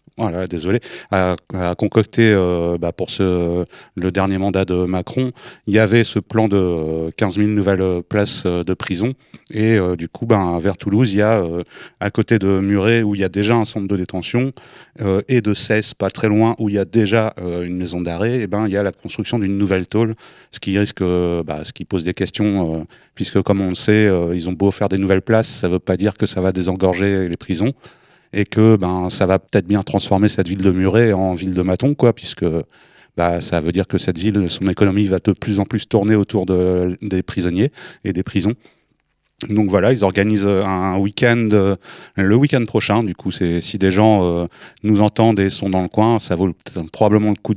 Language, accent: French, French